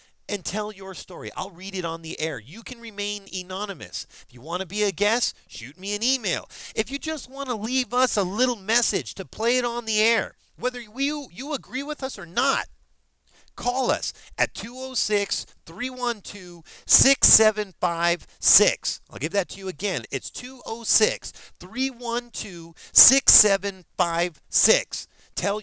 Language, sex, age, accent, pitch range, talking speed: English, male, 40-59, American, 140-215 Hz, 145 wpm